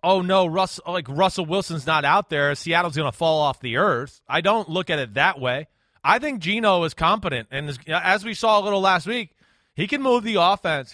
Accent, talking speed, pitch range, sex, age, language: American, 240 wpm, 175-225 Hz, male, 30-49, English